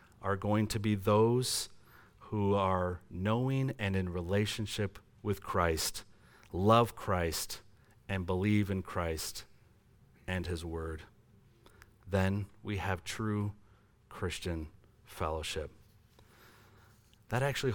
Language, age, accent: English, 40-59, American